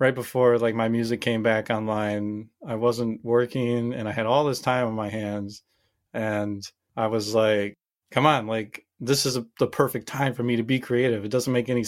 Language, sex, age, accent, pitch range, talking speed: English, male, 30-49, American, 110-135 Hz, 210 wpm